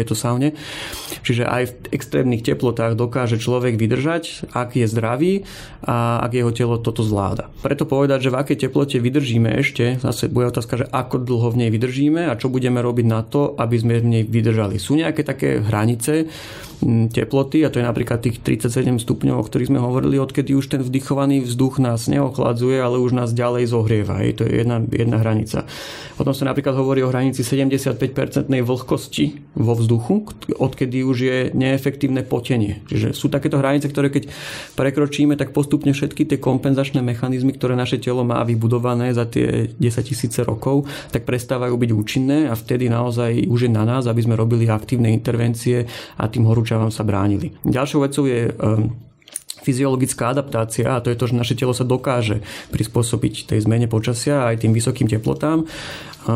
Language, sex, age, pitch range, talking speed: Slovak, male, 30-49, 115-135 Hz, 175 wpm